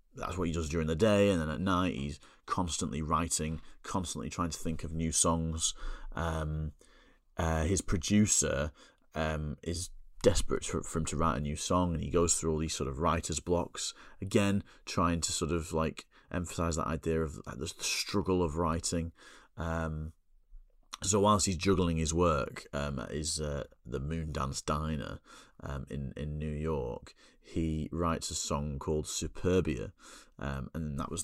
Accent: British